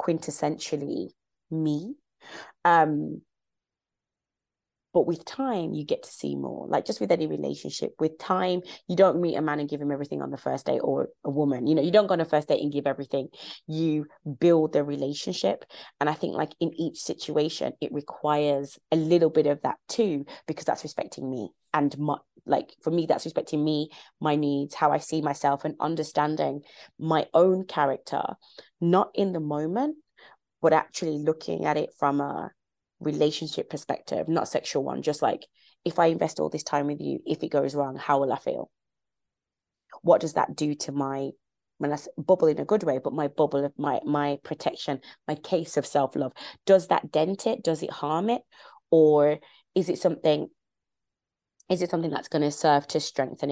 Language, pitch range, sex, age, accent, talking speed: English, 145-165 Hz, female, 20-39, British, 185 wpm